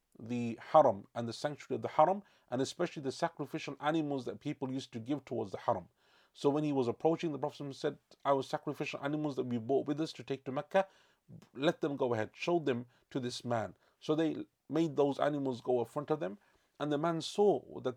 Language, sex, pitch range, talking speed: English, male, 115-150 Hz, 215 wpm